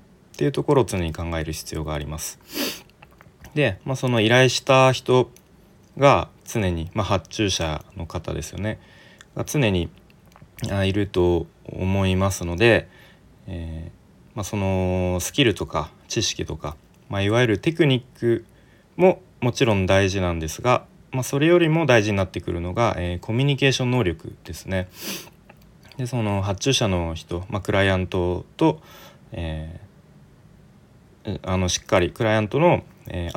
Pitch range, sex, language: 90-130 Hz, male, Japanese